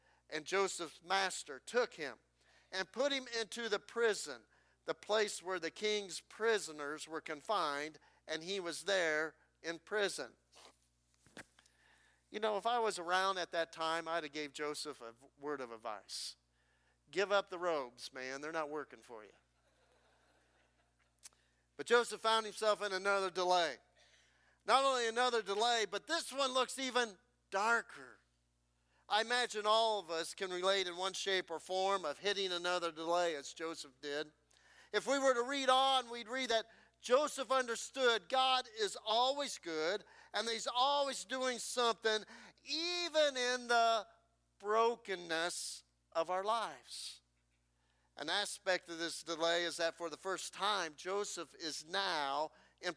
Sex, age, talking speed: male, 50-69, 145 wpm